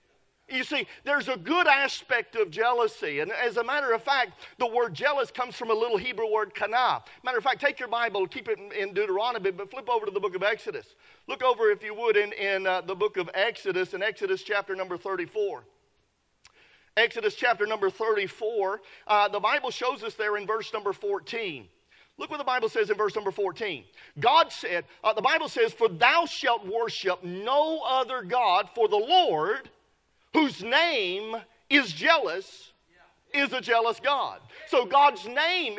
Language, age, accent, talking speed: English, 40-59, American, 185 wpm